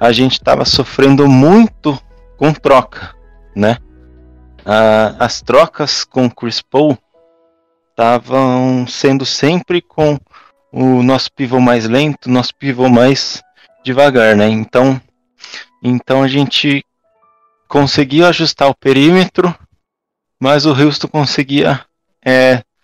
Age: 20-39